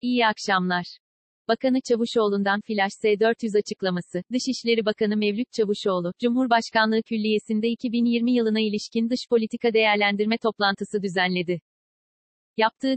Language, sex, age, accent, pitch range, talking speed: Turkish, female, 40-59, native, 195-230 Hz, 100 wpm